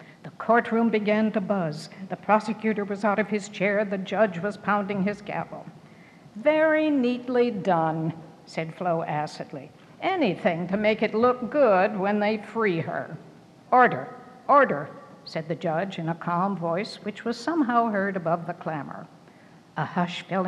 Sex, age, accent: female, 60-79, American